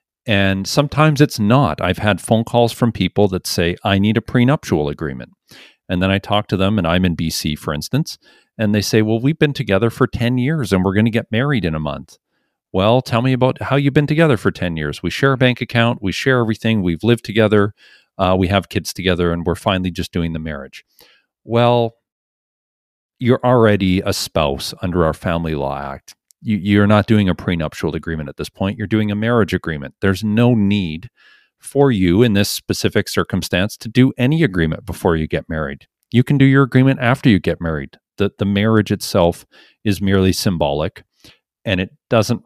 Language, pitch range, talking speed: English, 90-115 Hz, 200 wpm